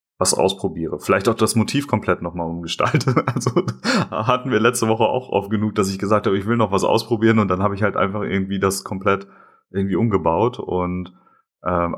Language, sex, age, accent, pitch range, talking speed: German, male, 30-49, German, 90-110 Hz, 200 wpm